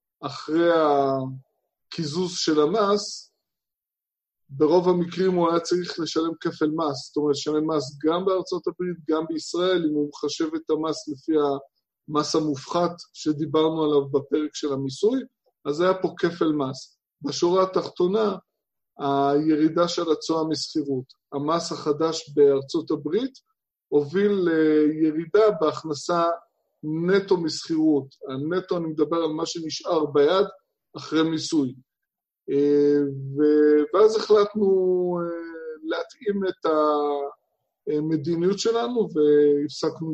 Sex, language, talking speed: male, Hebrew, 110 wpm